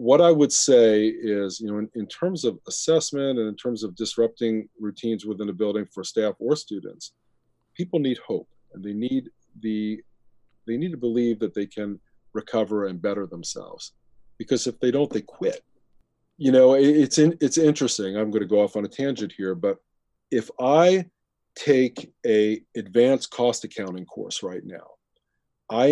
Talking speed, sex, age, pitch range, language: 180 wpm, male, 40-59, 105-130 Hz, English